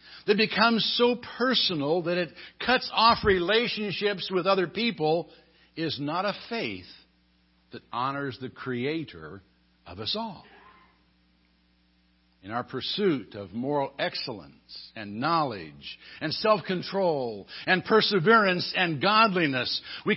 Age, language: 60-79, English